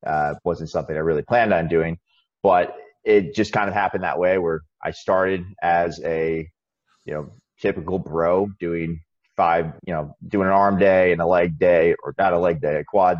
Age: 30-49